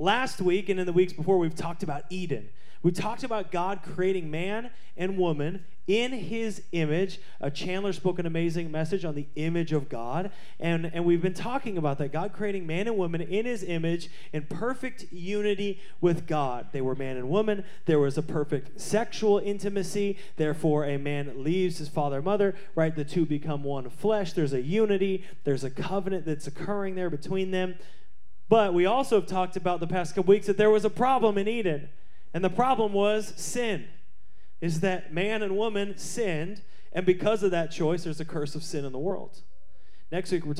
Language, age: English, 30-49